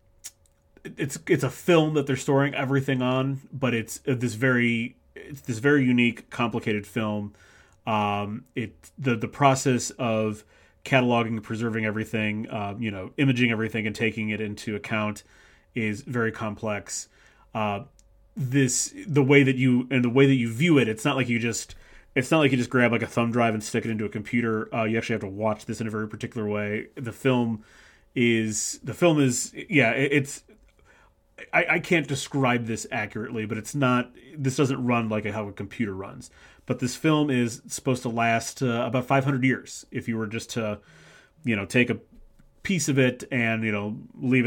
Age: 30-49